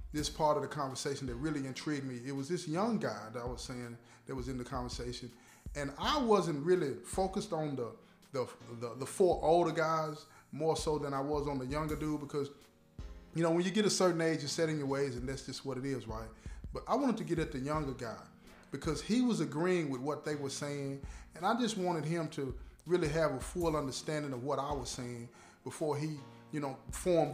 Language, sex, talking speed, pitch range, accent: English, male, 230 wpm, 135-165 Hz, American